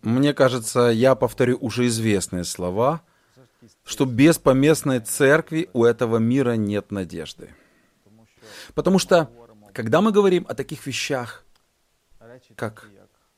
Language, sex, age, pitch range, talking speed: Russian, male, 30-49, 110-160 Hz, 110 wpm